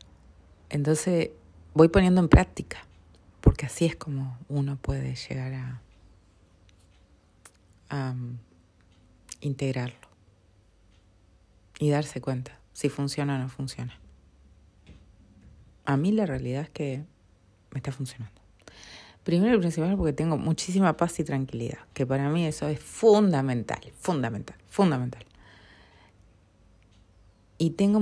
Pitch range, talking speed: 95-150 Hz, 115 wpm